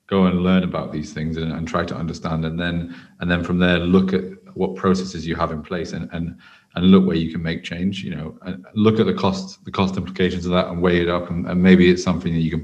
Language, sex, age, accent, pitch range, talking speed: English, male, 30-49, British, 85-95 Hz, 275 wpm